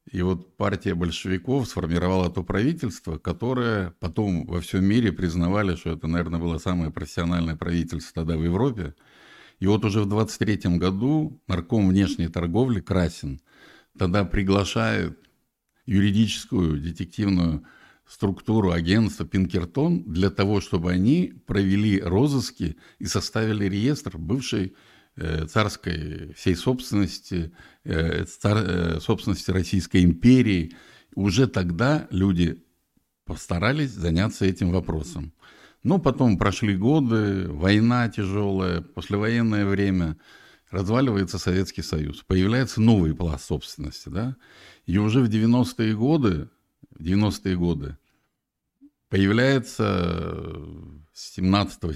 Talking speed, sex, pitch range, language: 100 wpm, male, 85-110 Hz, Russian